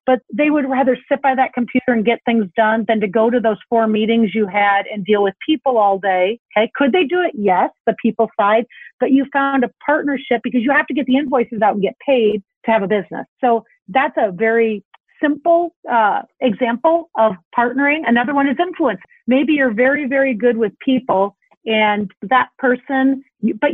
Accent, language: American, English